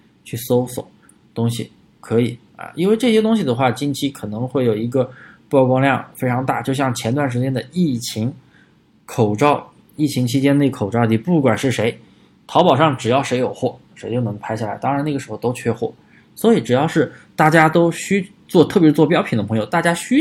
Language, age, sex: Chinese, 20-39, male